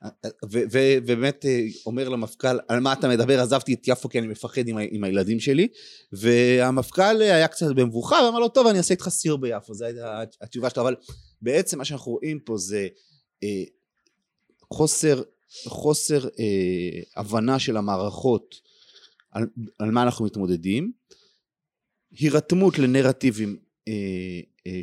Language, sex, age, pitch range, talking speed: Hebrew, male, 30-49, 110-145 Hz, 140 wpm